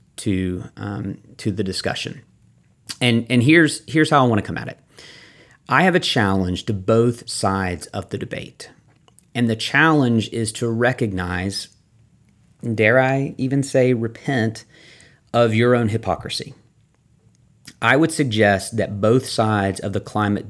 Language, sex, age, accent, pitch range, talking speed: English, male, 40-59, American, 105-130 Hz, 145 wpm